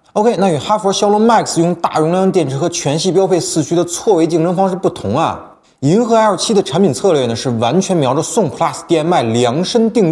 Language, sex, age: Chinese, male, 20-39